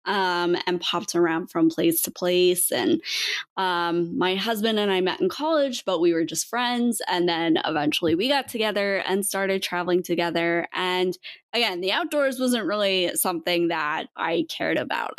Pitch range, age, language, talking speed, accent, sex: 175-230 Hz, 20-39, English, 170 wpm, American, female